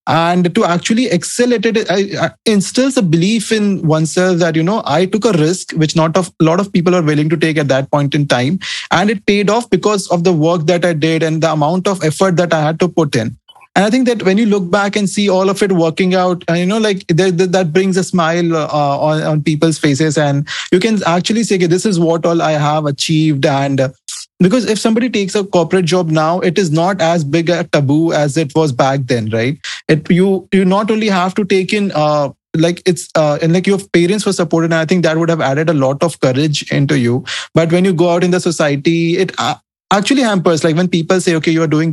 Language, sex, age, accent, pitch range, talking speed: English, male, 20-39, Indian, 155-190 Hz, 240 wpm